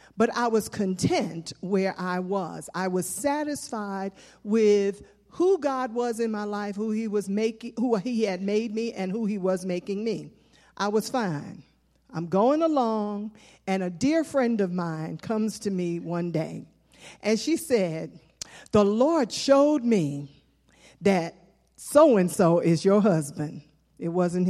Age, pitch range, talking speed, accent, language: 50-69, 190-290 Hz, 155 wpm, American, English